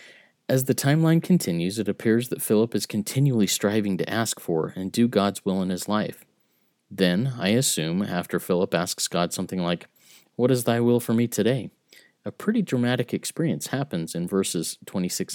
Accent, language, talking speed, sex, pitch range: American, English, 175 wpm, male, 95-115 Hz